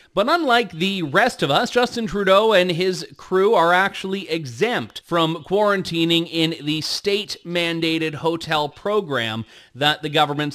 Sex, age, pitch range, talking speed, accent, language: male, 30-49, 150-195 Hz, 135 wpm, American, English